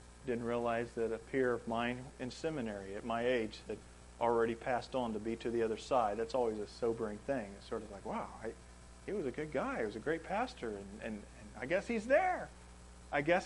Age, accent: 40-59, American